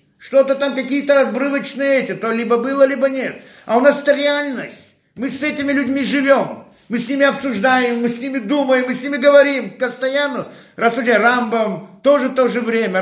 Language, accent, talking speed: Russian, native, 190 wpm